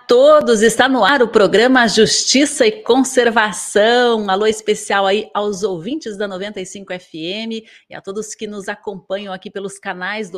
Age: 30-49